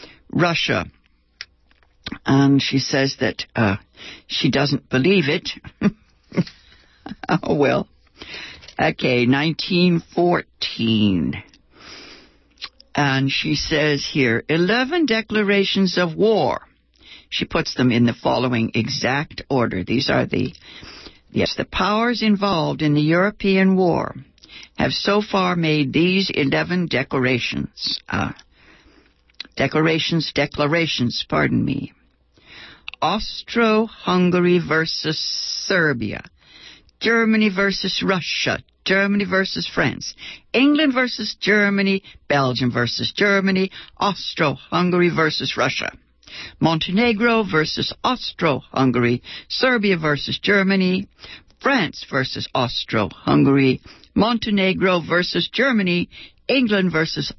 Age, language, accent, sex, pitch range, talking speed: 60-79, English, American, female, 135-200 Hz, 95 wpm